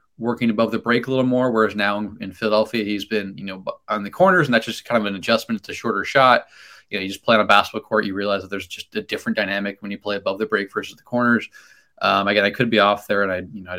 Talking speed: 290 wpm